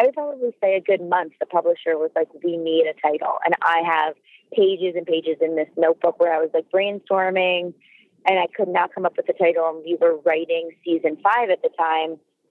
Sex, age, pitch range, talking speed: female, 20-39, 160-190 Hz, 225 wpm